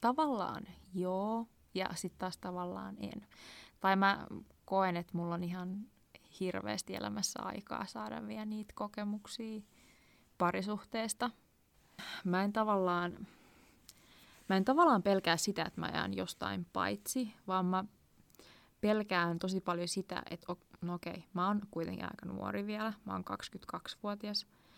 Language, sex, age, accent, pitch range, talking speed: Finnish, female, 20-39, native, 170-205 Hz, 120 wpm